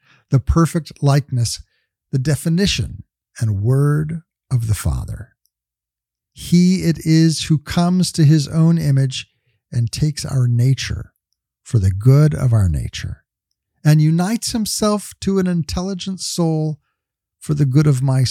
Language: English